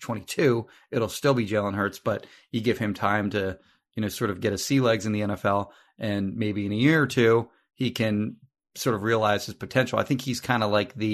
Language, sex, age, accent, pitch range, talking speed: English, male, 30-49, American, 105-125 Hz, 235 wpm